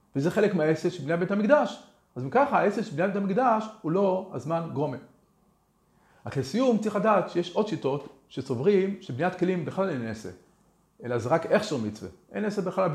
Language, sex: Hebrew, male